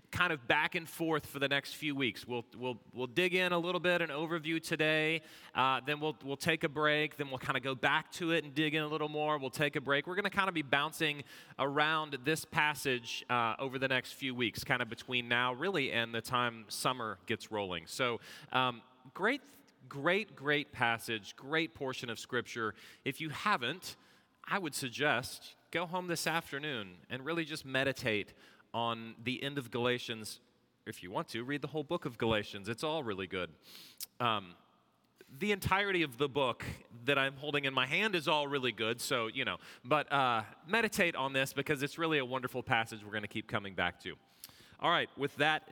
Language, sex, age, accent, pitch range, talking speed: English, male, 30-49, American, 120-160 Hz, 205 wpm